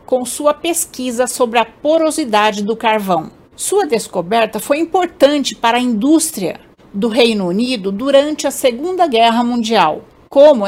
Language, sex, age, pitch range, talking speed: Portuguese, female, 60-79, 215-290 Hz, 135 wpm